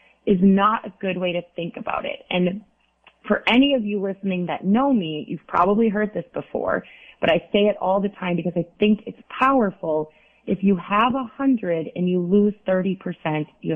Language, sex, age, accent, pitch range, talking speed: English, female, 30-49, American, 165-205 Hz, 200 wpm